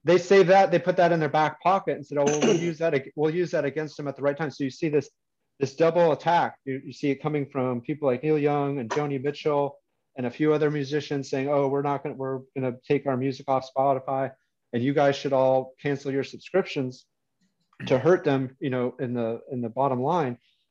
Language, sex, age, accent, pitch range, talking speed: English, male, 30-49, American, 130-150 Hz, 245 wpm